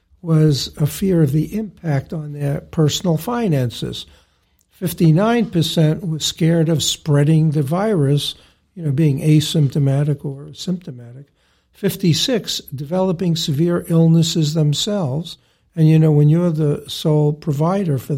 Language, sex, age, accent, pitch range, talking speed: English, male, 60-79, American, 145-180 Hz, 120 wpm